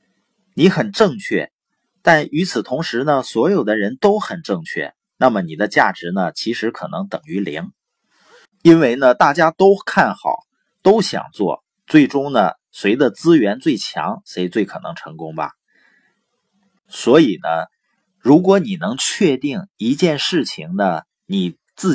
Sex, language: male, Chinese